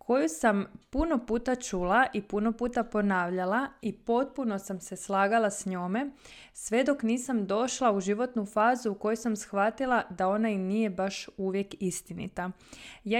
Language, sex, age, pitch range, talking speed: Croatian, female, 20-39, 195-250 Hz, 160 wpm